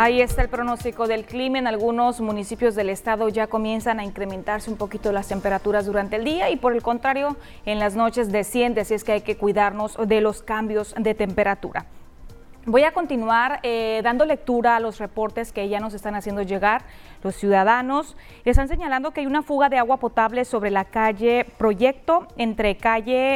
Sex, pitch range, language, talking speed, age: female, 210-245 Hz, Spanish, 190 wpm, 30-49